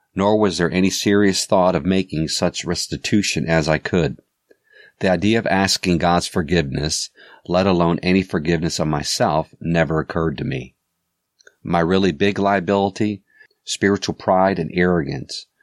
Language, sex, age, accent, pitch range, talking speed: English, male, 40-59, American, 80-100 Hz, 140 wpm